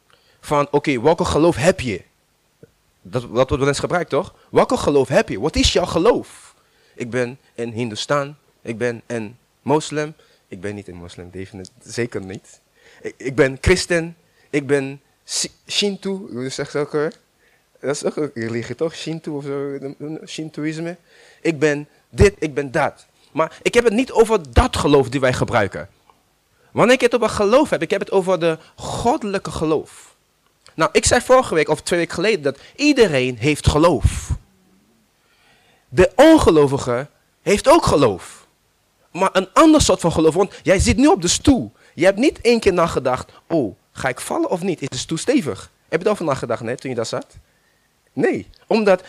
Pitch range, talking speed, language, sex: 135-195 Hz, 175 wpm, Dutch, male